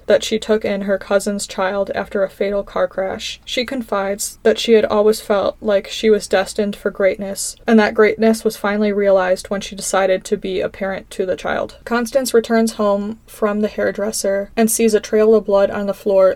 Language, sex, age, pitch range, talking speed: English, female, 20-39, 200-220 Hz, 205 wpm